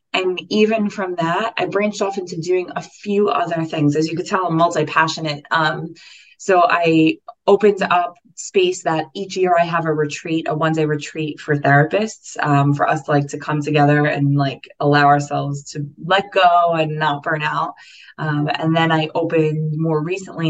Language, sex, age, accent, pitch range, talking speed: English, female, 20-39, American, 145-170 Hz, 185 wpm